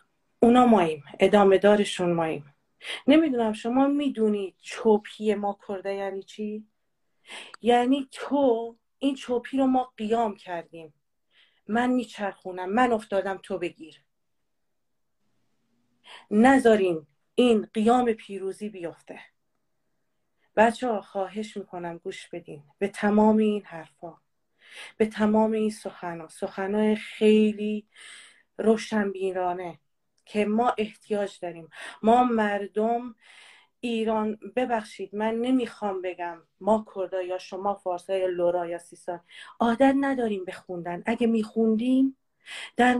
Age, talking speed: 40-59, 105 wpm